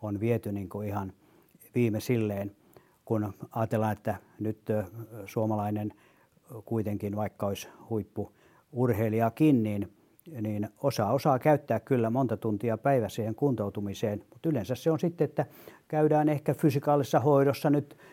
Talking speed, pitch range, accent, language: 115 wpm, 110-150 Hz, native, Finnish